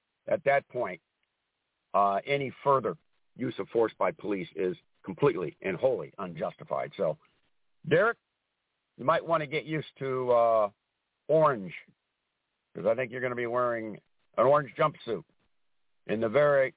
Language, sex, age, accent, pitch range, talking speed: English, male, 60-79, American, 115-140 Hz, 145 wpm